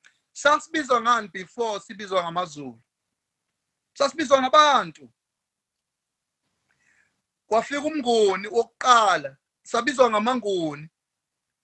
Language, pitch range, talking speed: English, 195-255 Hz, 65 wpm